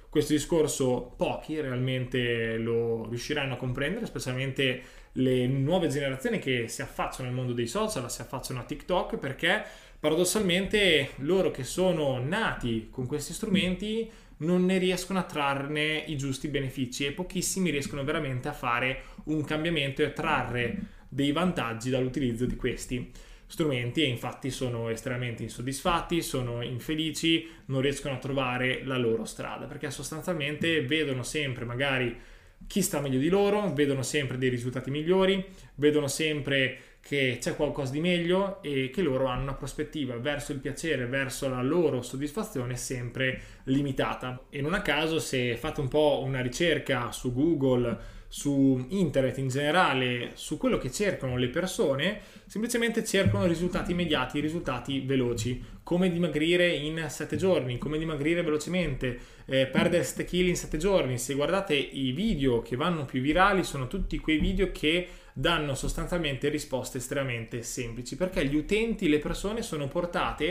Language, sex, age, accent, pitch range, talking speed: Italian, male, 20-39, native, 130-170 Hz, 150 wpm